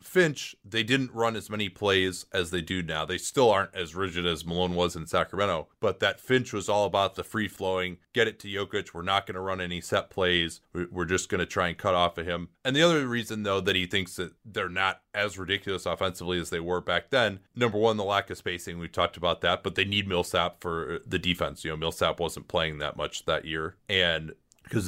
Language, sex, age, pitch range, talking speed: English, male, 30-49, 90-105 Hz, 240 wpm